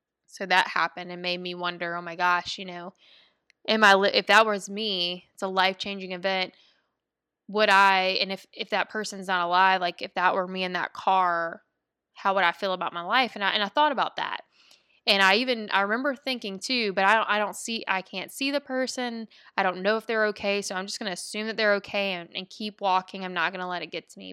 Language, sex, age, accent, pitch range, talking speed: English, female, 20-39, American, 180-205 Hz, 250 wpm